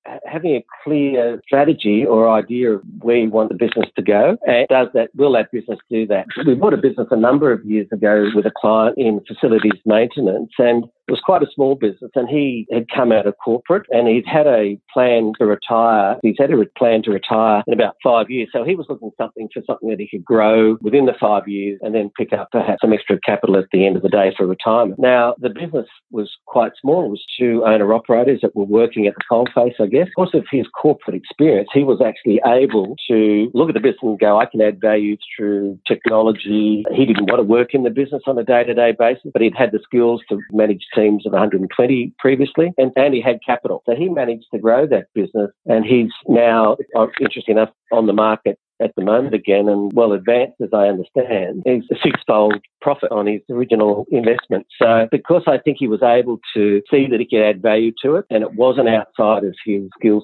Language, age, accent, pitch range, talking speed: English, 50-69, Australian, 105-120 Hz, 225 wpm